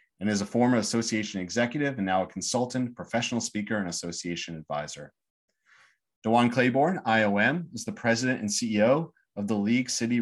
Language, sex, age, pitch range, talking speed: English, male, 30-49, 100-125 Hz, 160 wpm